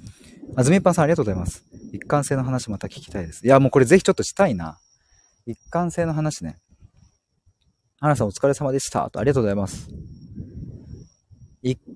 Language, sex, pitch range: Japanese, male, 100-145 Hz